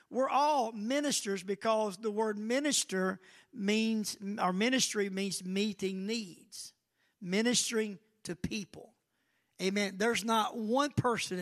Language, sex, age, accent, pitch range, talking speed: English, male, 50-69, American, 195-235 Hz, 110 wpm